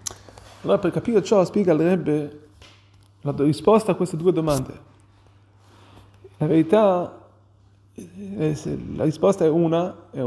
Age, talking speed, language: 30-49, 115 wpm, Italian